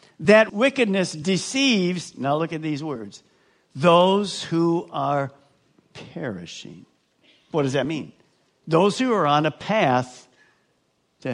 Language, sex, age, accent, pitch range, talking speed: English, male, 60-79, American, 155-210 Hz, 120 wpm